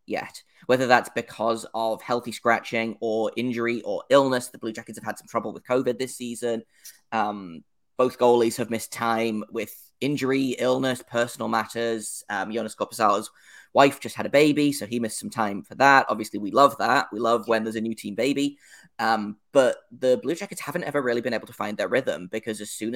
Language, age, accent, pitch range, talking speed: English, 20-39, British, 110-130 Hz, 200 wpm